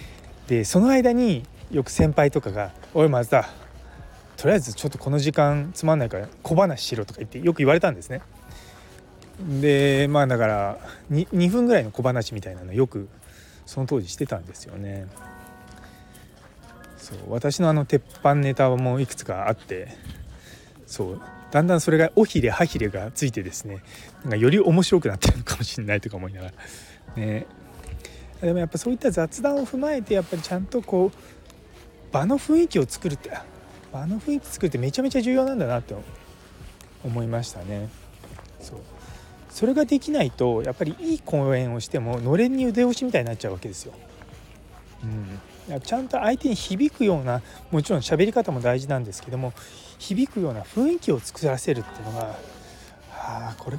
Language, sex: Japanese, male